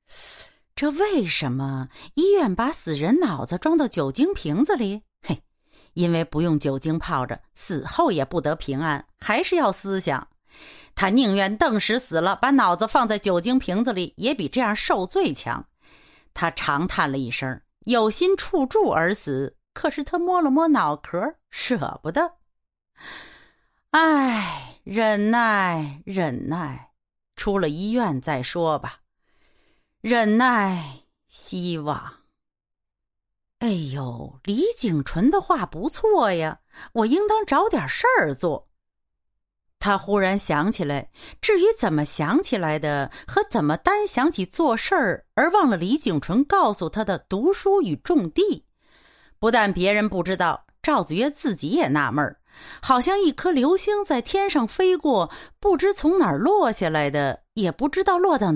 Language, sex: Chinese, female